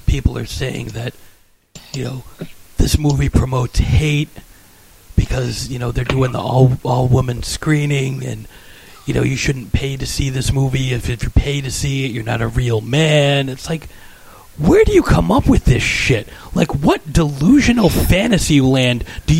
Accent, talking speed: American, 175 wpm